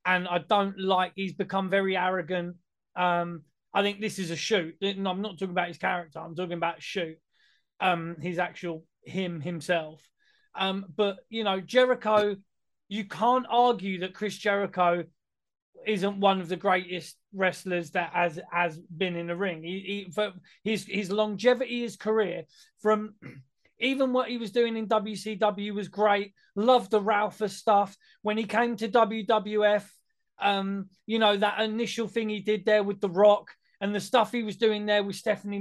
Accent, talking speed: British, 170 wpm